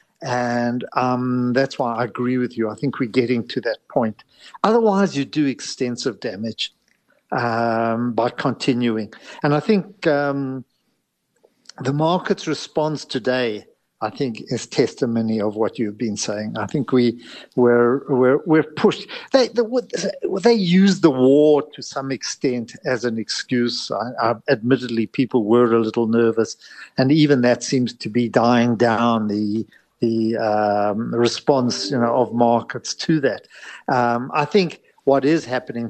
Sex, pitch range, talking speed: male, 120-145 Hz, 155 wpm